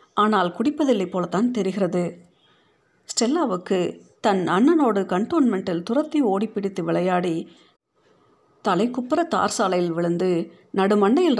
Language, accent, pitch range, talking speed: Tamil, native, 180-240 Hz, 90 wpm